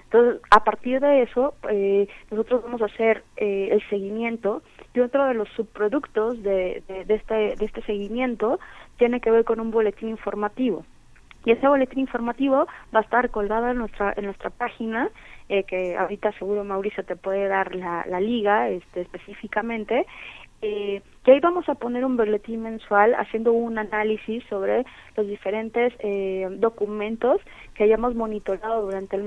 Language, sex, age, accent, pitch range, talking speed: Spanish, female, 30-49, Mexican, 200-235 Hz, 165 wpm